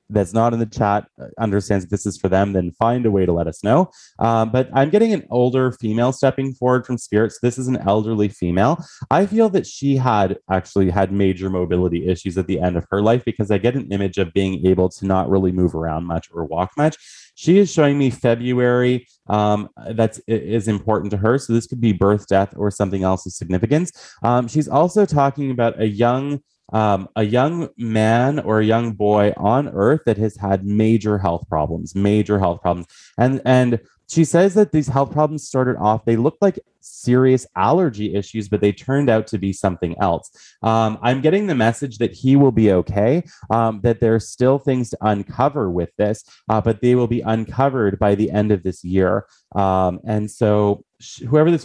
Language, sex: English, male